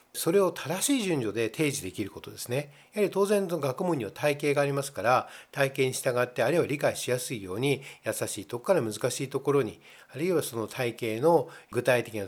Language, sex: Japanese, male